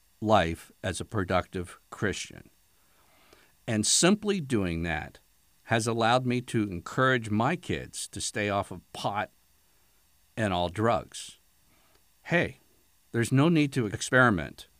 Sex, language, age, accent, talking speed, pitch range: male, English, 60-79, American, 120 wpm, 95-125 Hz